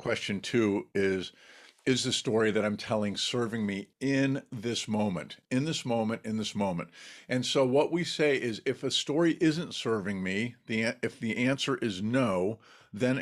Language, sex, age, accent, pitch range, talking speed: English, male, 50-69, American, 110-135 Hz, 175 wpm